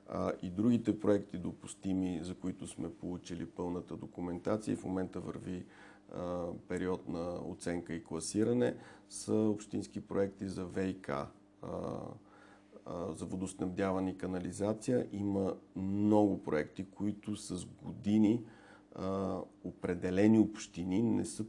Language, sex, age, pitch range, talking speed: Bulgarian, male, 50-69, 90-105 Hz, 105 wpm